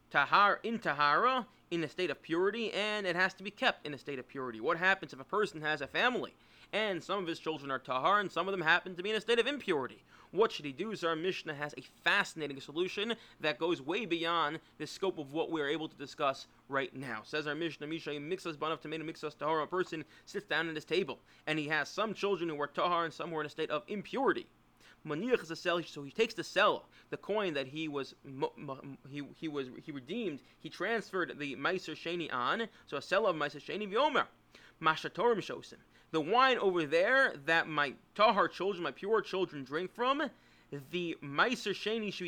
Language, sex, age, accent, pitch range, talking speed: English, male, 30-49, American, 150-205 Hz, 215 wpm